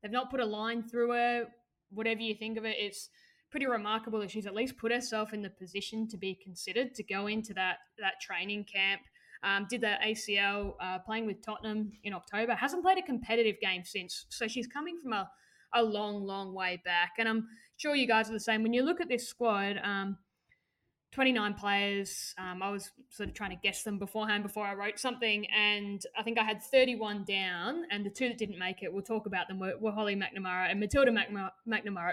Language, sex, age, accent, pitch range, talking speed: English, female, 10-29, Australian, 195-235 Hz, 215 wpm